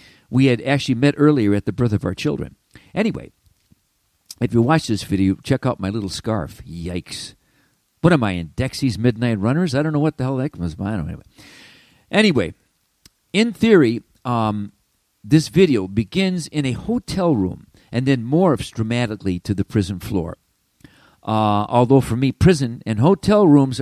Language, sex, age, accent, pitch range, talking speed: English, male, 50-69, American, 100-150 Hz, 175 wpm